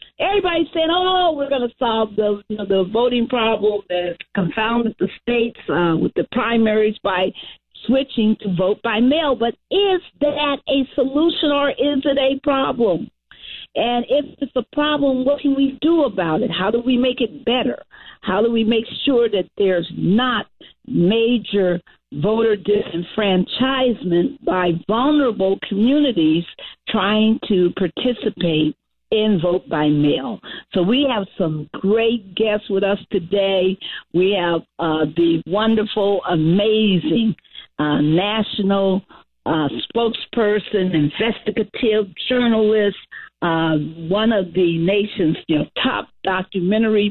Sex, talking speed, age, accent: female, 130 wpm, 50-69, American